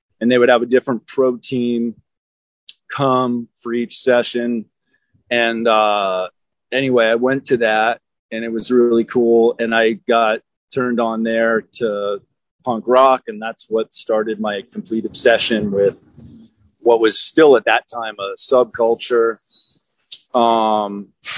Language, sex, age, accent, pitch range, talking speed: English, male, 30-49, American, 115-135 Hz, 140 wpm